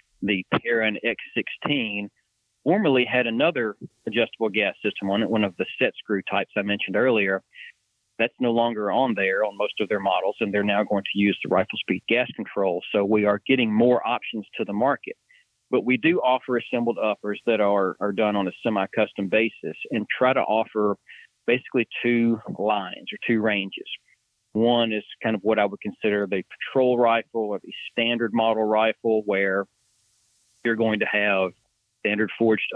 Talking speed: 180 wpm